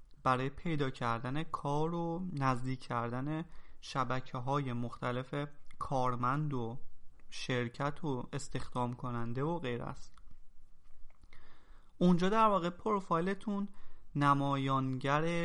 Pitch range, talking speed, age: 125-165 Hz, 95 wpm, 30-49